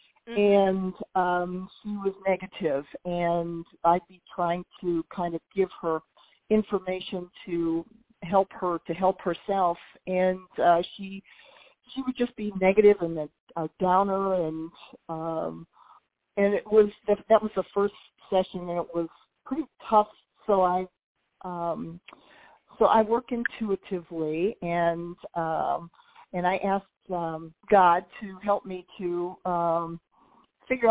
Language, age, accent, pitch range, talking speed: English, 50-69, American, 175-210 Hz, 135 wpm